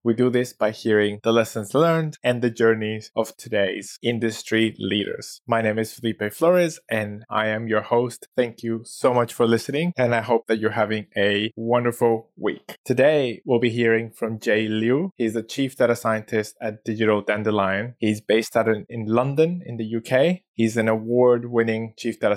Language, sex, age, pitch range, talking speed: English, male, 20-39, 105-120 Hz, 180 wpm